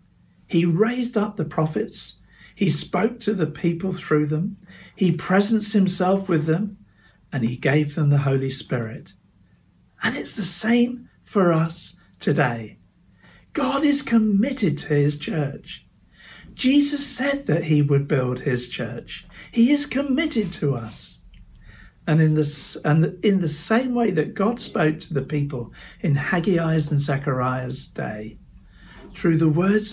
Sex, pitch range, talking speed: male, 135-195 Hz, 140 wpm